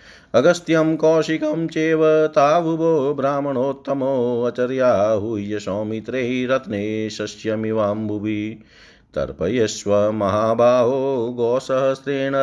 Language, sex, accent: Hindi, male, native